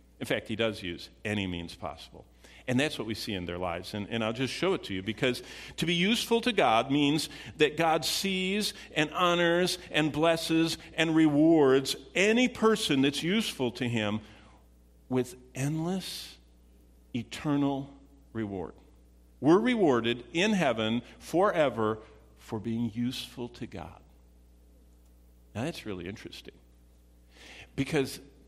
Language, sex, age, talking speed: English, male, 50-69, 135 wpm